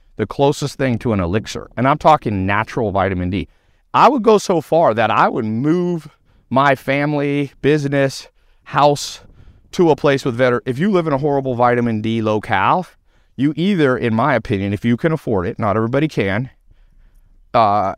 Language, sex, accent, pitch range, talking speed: English, male, American, 95-135 Hz, 175 wpm